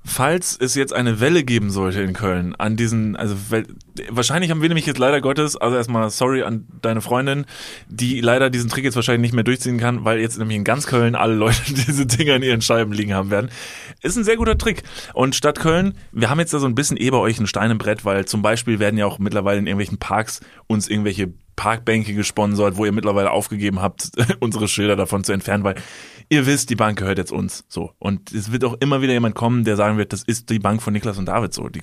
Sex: male